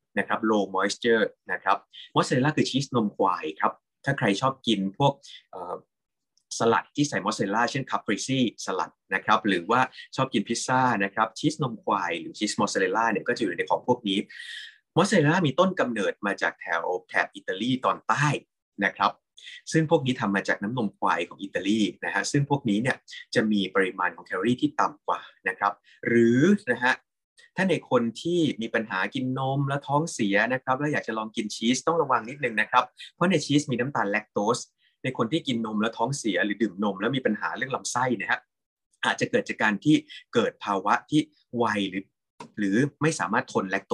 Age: 20-39